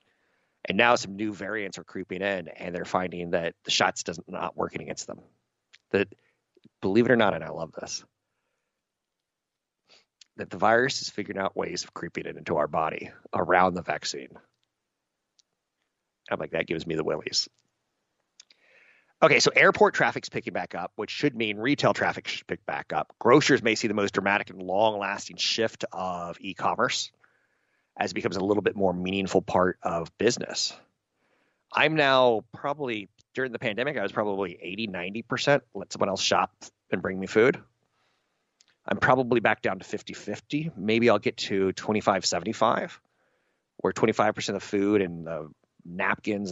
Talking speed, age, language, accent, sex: 170 wpm, 30-49, English, American, male